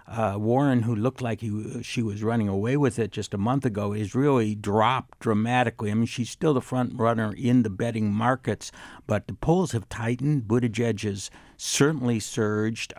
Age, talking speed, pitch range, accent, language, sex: 60-79, 185 wpm, 105-125 Hz, American, English, male